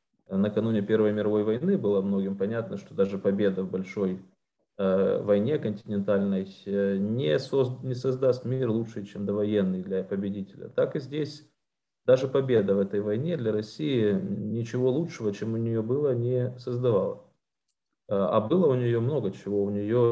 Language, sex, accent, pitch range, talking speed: Ukrainian, male, native, 100-120 Hz, 145 wpm